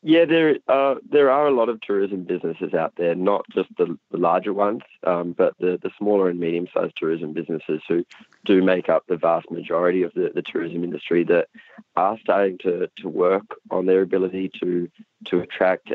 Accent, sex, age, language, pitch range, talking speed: Australian, male, 20-39, English, 85-115 Hz, 190 wpm